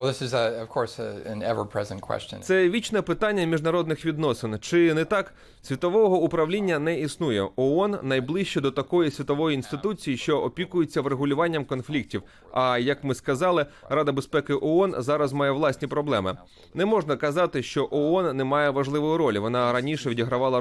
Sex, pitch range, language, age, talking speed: male, 130-165 Hz, Ukrainian, 30-49, 130 wpm